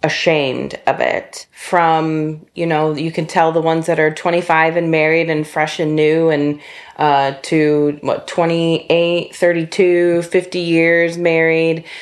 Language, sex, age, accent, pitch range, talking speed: English, female, 30-49, American, 145-170 Hz, 145 wpm